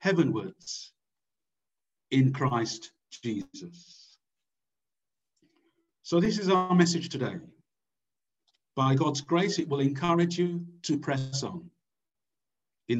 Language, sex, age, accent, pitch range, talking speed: English, male, 50-69, British, 135-175 Hz, 95 wpm